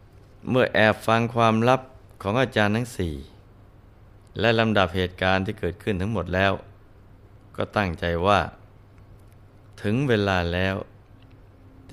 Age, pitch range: 20-39, 95-105 Hz